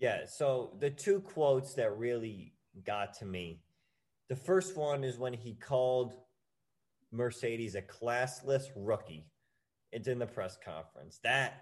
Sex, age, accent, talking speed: male, 20-39, American, 140 wpm